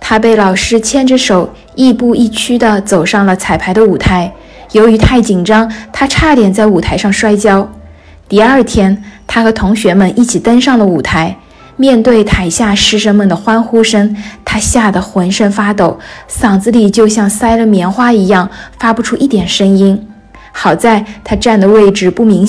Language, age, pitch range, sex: Chinese, 20-39, 200-235 Hz, female